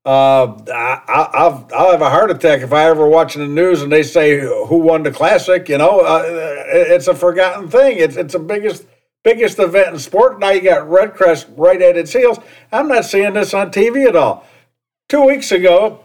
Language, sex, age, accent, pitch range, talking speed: English, male, 60-79, American, 160-205 Hz, 215 wpm